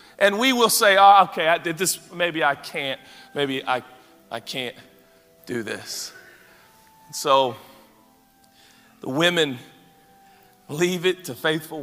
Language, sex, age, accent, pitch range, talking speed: English, male, 40-59, American, 120-175 Hz, 130 wpm